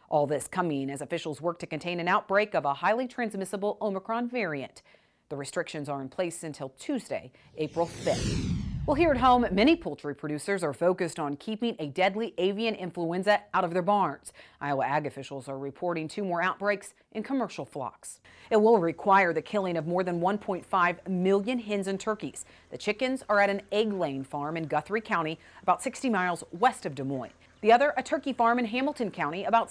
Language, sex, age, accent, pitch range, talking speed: English, female, 40-59, American, 160-235 Hz, 190 wpm